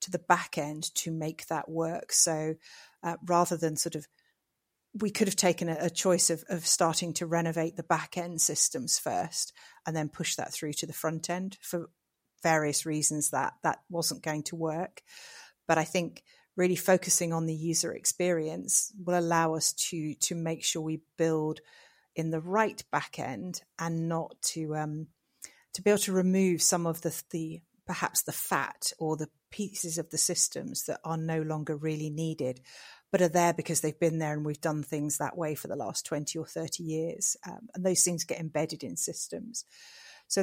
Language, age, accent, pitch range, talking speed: English, 40-59, British, 155-175 Hz, 190 wpm